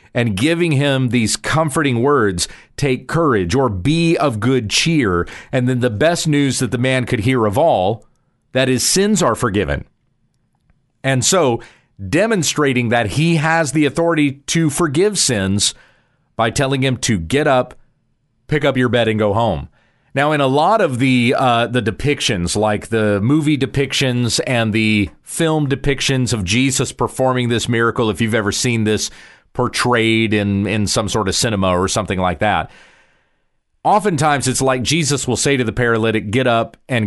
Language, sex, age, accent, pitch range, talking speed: English, male, 40-59, American, 115-140 Hz, 170 wpm